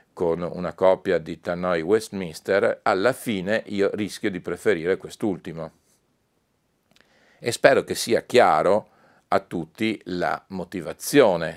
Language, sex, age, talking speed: Italian, male, 40-59, 115 wpm